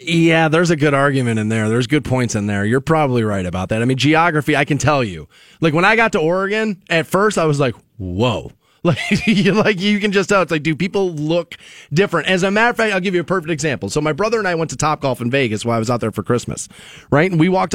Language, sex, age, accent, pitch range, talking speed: English, male, 30-49, American, 140-195 Hz, 270 wpm